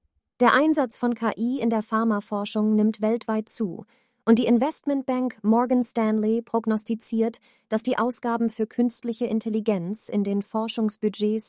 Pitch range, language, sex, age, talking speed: 200-235 Hz, German, female, 30-49, 130 wpm